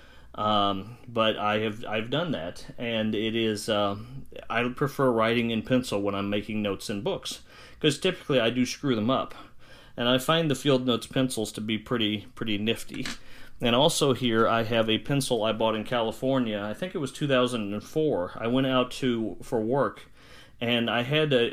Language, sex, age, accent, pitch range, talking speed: English, male, 40-59, American, 110-135 Hz, 185 wpm